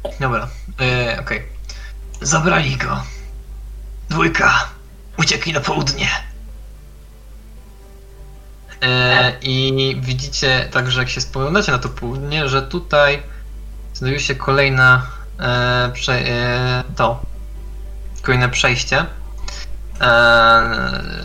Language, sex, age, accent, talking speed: Polish, male, 20-39, native, 90 wpm